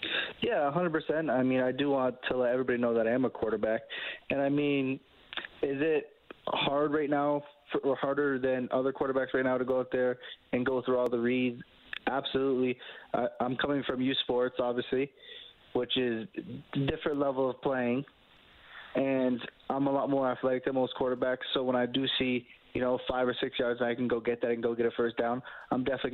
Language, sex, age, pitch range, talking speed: English, male, 20-39, 120-140 Hz, 210 wpm